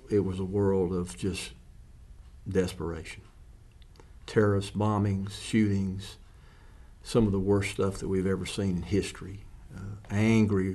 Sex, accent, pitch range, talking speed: male, American, 95-105 Hz, 130 wpm